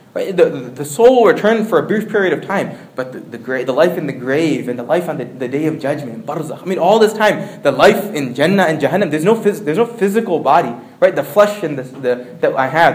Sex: male